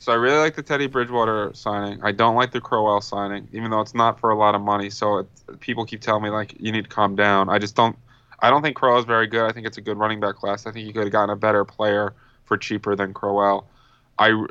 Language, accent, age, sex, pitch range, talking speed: English, American, 20-39, male, 100-110 Hz, 275 wpm